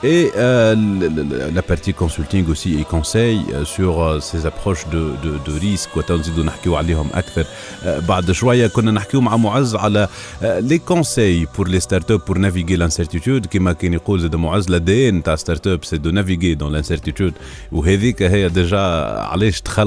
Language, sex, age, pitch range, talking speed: Arabic, male, 40-59, 90-110 Hz, 170 wpm